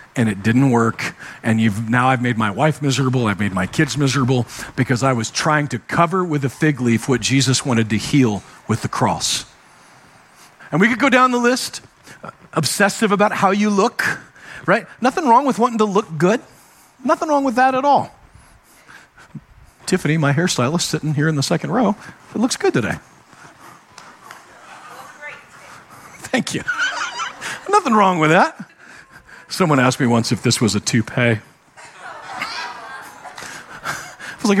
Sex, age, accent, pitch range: male, 50-69, American, 135-185 Hz